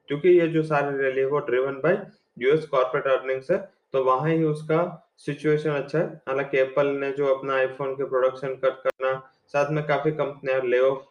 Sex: male